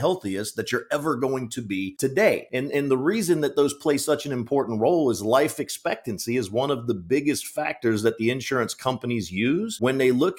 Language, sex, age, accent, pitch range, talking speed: English, male, 40-59, American, 115-145 Hz, 210 wpm